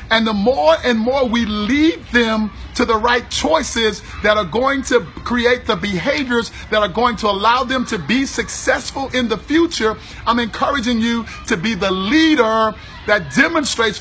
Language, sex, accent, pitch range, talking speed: English, male, American, 215-265 Hz, 170 wpm